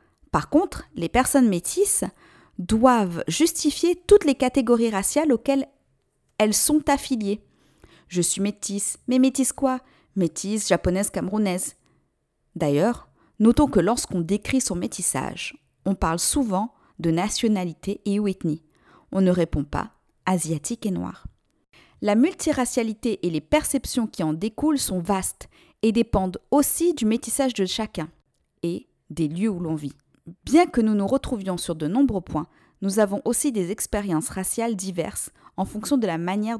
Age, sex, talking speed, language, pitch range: 40-59, female, 150 wpm, French, 180-240 Hz